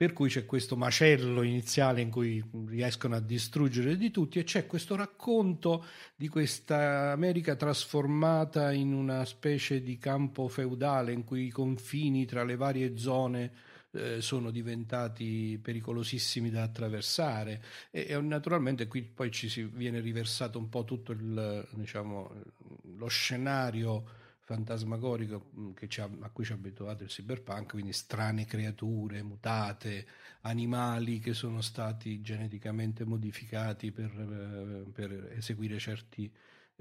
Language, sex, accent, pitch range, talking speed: Italian, male, native, 110-130 Hz, 130 wpm